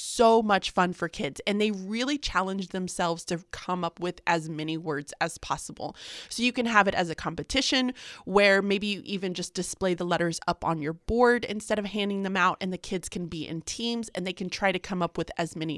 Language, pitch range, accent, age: English, 170-210 Hz, American, 20-39